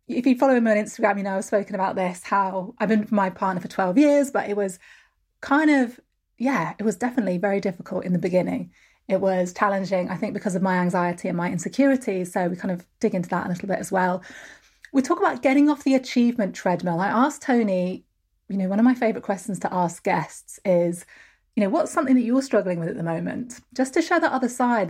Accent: British